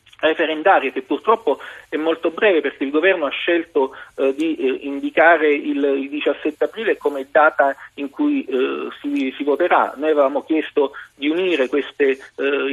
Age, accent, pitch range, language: 40-59, native, 140-190 Hz, Italian